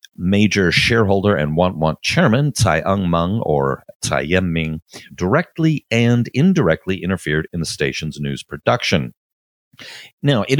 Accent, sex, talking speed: American, male, 135 wpm